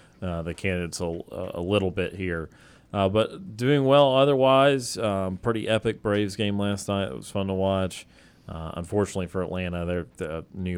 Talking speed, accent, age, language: 180 wpm, American, 30-49, English